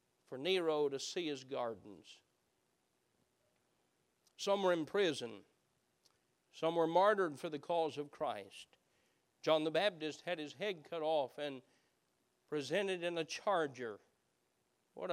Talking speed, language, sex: 125 wpm, English, male